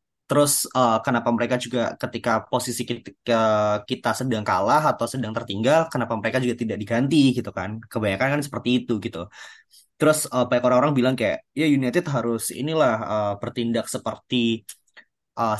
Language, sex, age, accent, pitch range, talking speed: Indonesian, male, 20-39, native, 115-150 Hz, 155 wpm